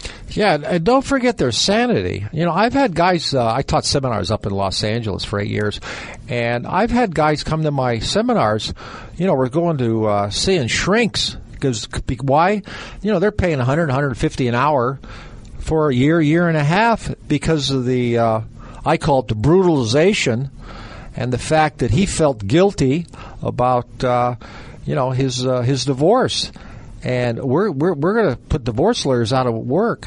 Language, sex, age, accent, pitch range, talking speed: English, male, 50-69, American, 115-160 Hz, 180 wpm